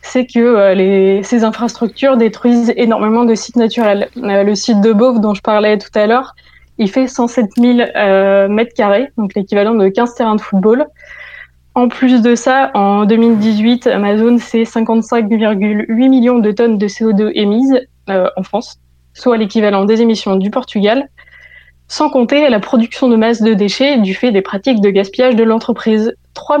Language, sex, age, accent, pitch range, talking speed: French, female, 20-39, French, 210-250 Hz, 170 wpm